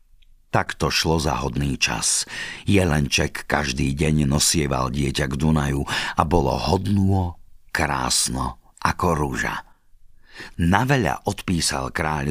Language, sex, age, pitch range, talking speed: Slovak, male, 50-69, 75-95 Hz, 105 wpm